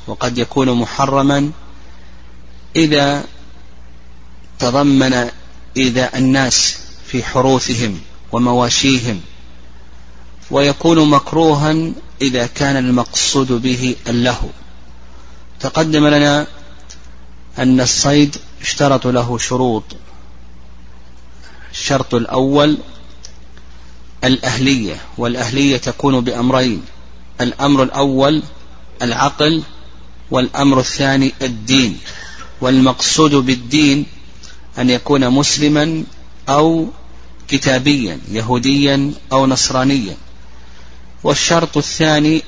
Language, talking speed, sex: Arabic, 70 wpm, male